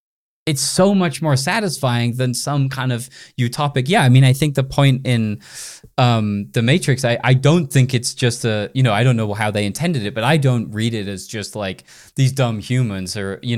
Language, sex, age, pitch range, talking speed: English, male, 20-39, 115-140 Hz, 220 wpm